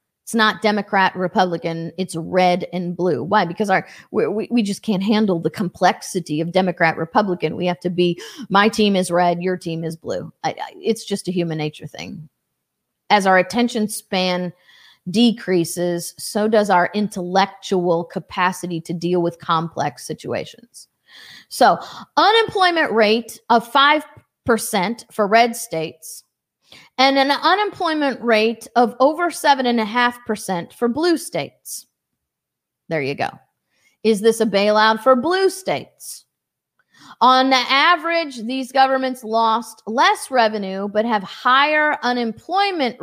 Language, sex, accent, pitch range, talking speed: English, female, American, 185-270 Hz, 130 wpm